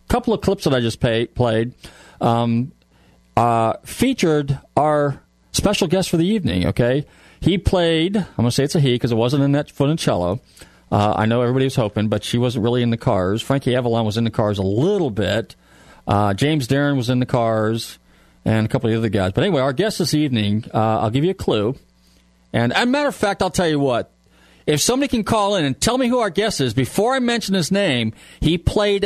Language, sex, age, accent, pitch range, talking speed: English, male, 40-59, American, 115-170 Hz, 230 wpm